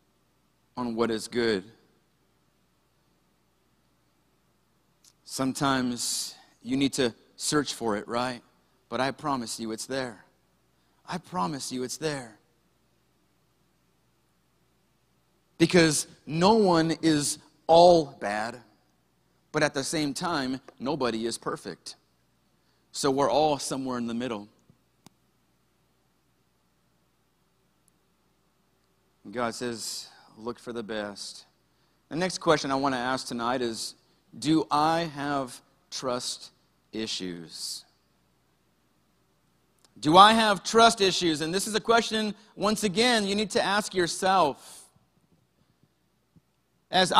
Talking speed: 105 wpm